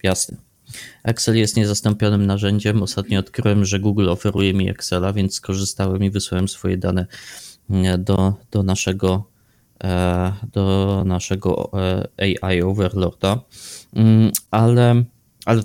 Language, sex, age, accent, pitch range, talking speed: Polish, male, 20-39, native, 100-115 Hz, 105 wpm